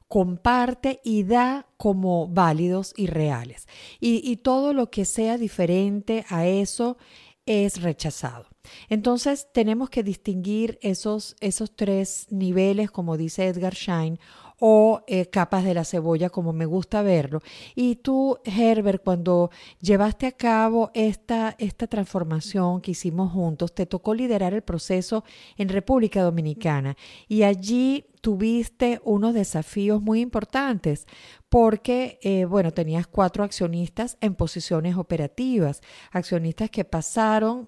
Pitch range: 175-225 Hz